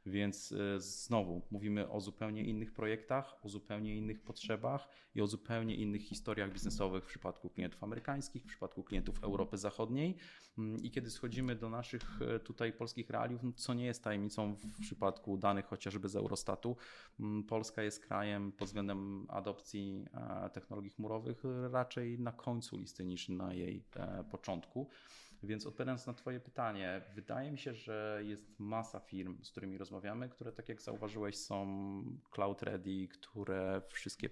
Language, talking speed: Polish, 150 wpm